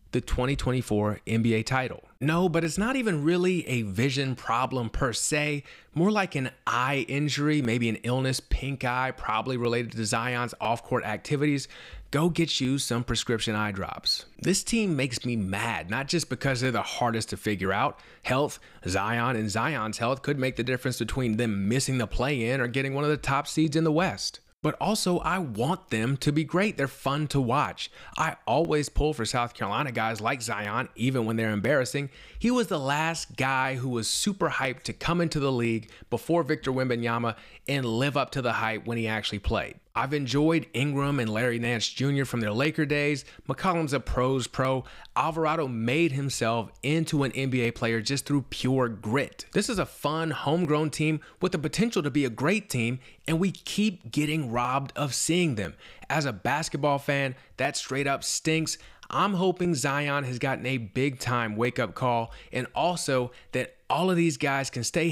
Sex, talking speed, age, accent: male, 190 wpm, 30-49, American